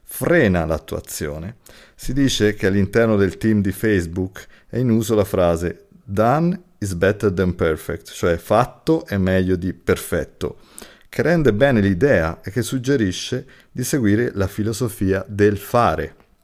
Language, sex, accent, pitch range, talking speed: Italian, male, native, 95-125 Hz, 140 wpm